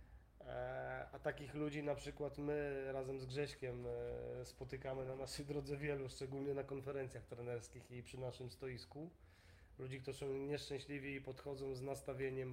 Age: 20-39